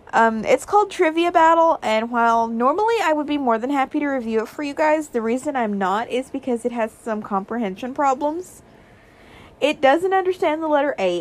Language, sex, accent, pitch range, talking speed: English, female, American, 215-315 Hz, 200 wpm